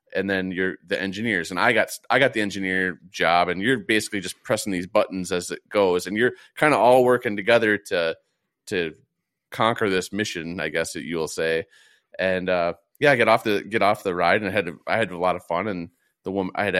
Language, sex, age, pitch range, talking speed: English, male, 30-49, 90-110 Hz, 240 wpm